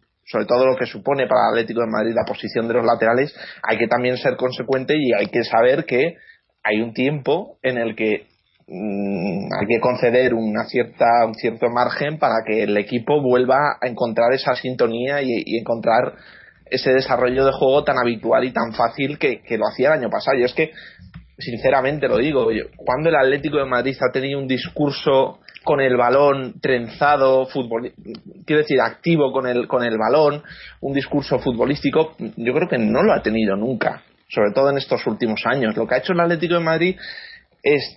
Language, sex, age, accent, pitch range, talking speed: Spanish, male, 30-49, Spanish, 120-155 Hz, 195 wpm